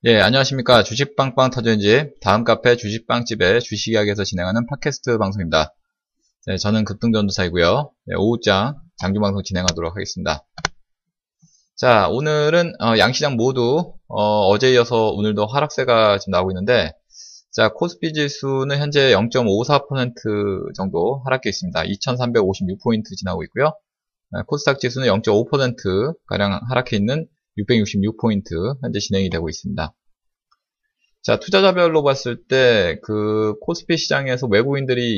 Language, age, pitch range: Korean, 20-39, 100-145 Hz